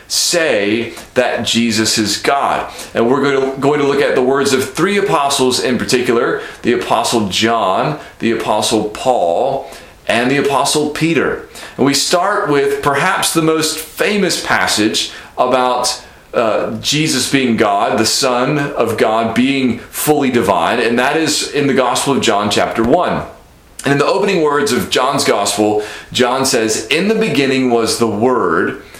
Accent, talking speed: American, 155 wpm